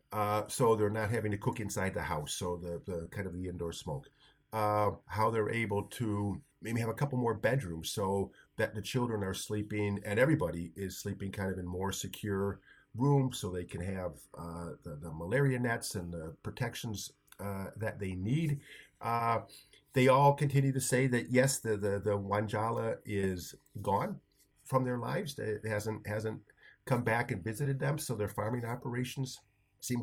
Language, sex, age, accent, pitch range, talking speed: English, male, 50-69, American, 100-125 Hz, 180 wpm